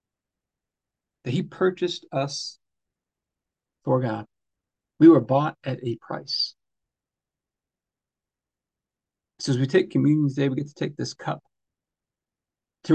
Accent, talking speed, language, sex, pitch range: American, 115 wpm, English, male, 115-140 Hz